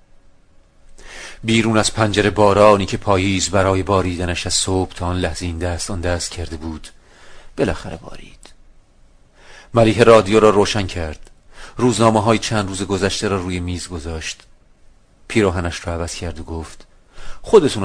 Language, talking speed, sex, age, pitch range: Persian, 130 wpm, male, 40-59, 85-105 Hz